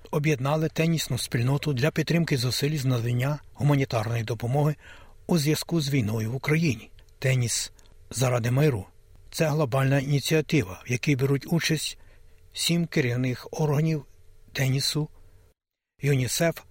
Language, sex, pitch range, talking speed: Ukrainian, male, 115-155 Hz, 115 wpm